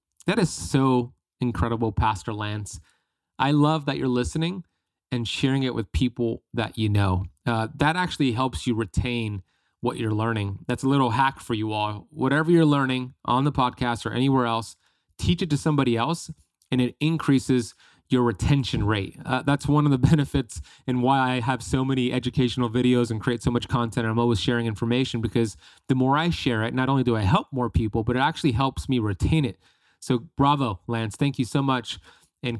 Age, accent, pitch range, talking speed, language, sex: 30-49, American, 110-135 Hz, 195 wpm, English, male